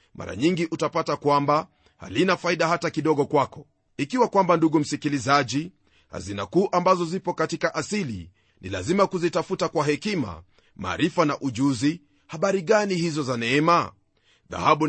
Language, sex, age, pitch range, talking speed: Swahili, male, 40-59, 145-175 Hz, 135 wpm